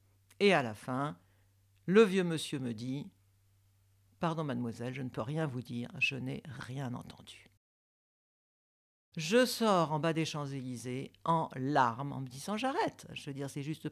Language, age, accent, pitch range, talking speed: French, 60-79, French, 115-170 Hz, 165 wpm